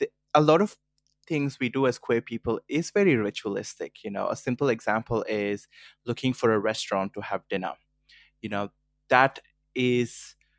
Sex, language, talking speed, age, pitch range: male, English, 165 wpm, 20-39, 105-125 Hz